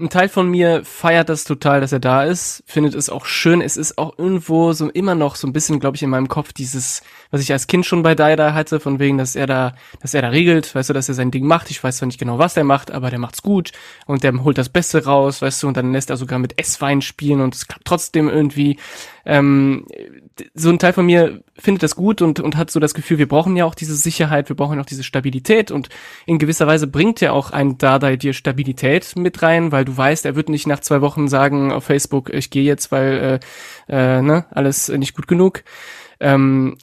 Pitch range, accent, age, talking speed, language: 135-165 Hz, German, 20-39, 250 wpm, German